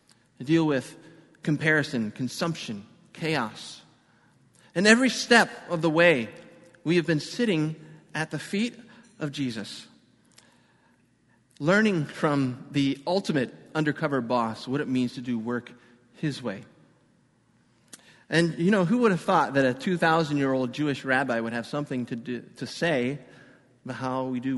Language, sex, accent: English, male, American